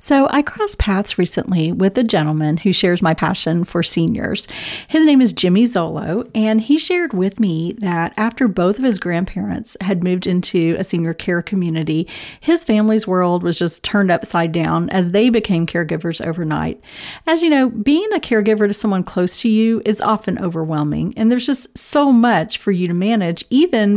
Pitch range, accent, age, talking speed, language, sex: 180-240 Hz, American, 40-59, 185 wpm, English, female